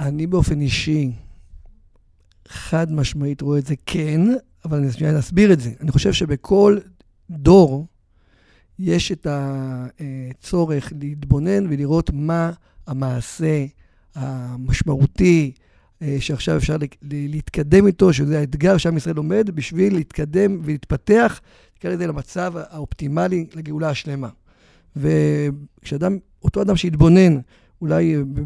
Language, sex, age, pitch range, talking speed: Hebrew, male, 50-69, 145-190 Hz, 105 wpm